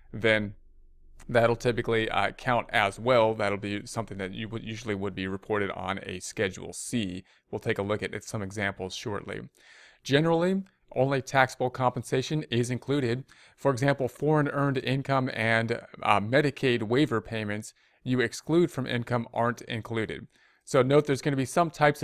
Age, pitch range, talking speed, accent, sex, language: 30-49, 105-130 Hz, 165 wpm, American, male, English